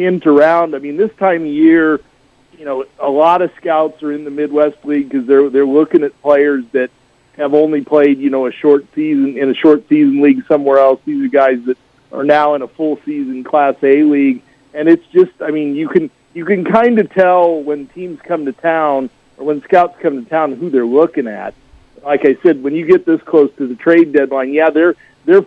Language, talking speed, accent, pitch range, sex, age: English, 225 wpm, American, 135-165 Hz, male, 40-59